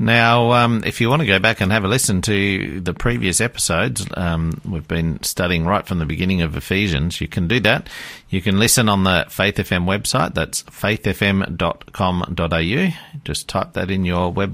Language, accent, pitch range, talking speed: English, Australian, 80-110 Hz, 190 wpm